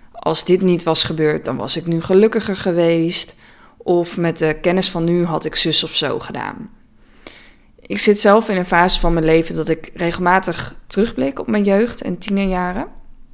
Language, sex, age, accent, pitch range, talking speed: Dutch, female, 20-39, Dutch, 165-200 Hz, 185 wpm